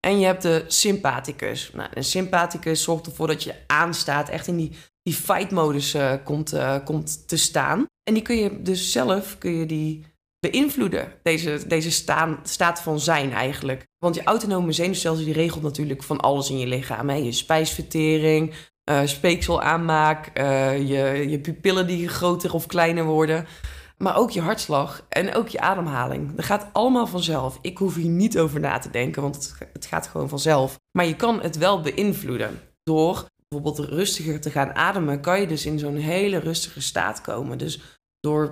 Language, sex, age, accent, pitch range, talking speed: Dutch, female, 20-39, Dutch, 150-185 Hz, 180 wpm